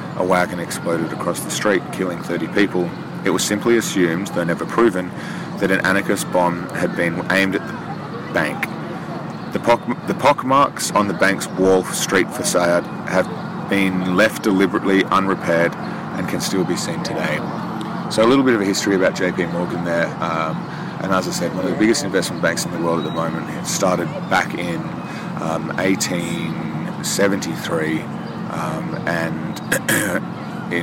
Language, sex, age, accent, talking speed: English, male, 30-49, Australian, 165 wpm